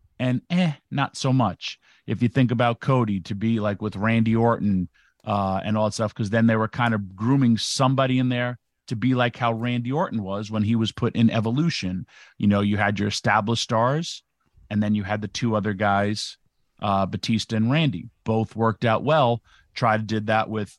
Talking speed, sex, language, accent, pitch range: 210 wpm, male, English, American, 105-125 Hz